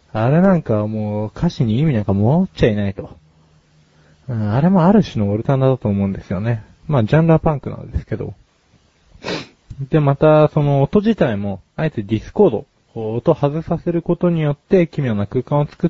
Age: 20-39